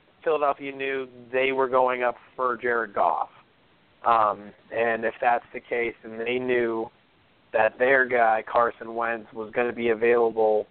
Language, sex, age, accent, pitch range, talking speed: English, male, 30-49, American, 115-135 Hz, 155 wpm